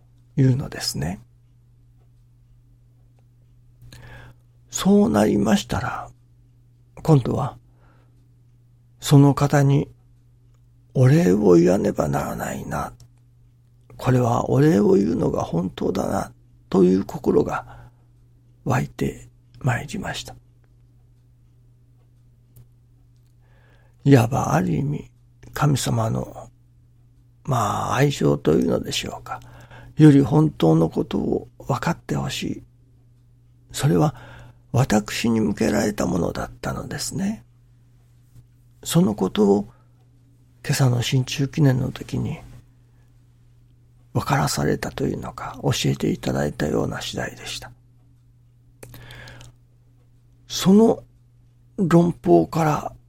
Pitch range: 120-130 Hz